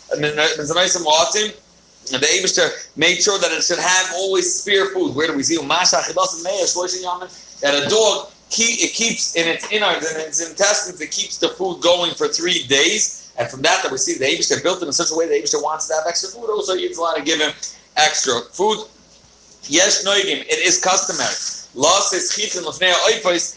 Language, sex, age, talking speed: English, male, 40-59, 180 wpm